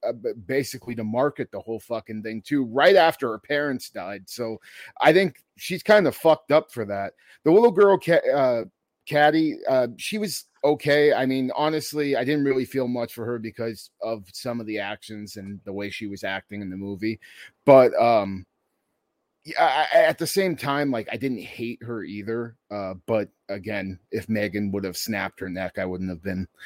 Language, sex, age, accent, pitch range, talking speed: English, male, 30-49, American, 105-140 Hz, 195 wpm